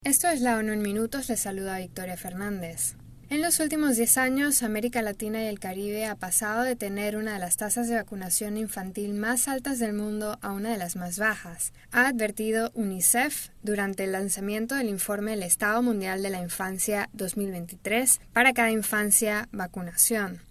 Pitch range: 190-235 Hz